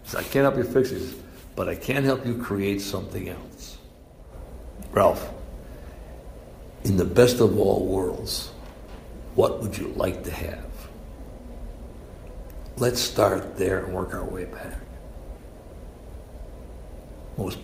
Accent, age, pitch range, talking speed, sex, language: American, 60-79, 75-130 Hz, 125 wpm, male, English